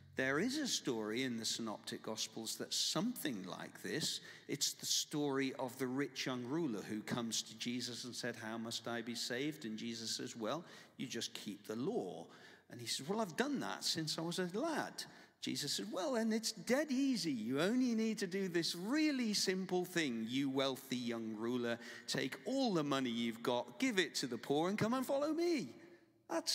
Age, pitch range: 50-69, 115-190 Hz